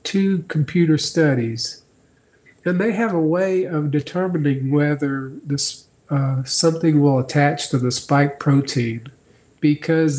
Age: 50-69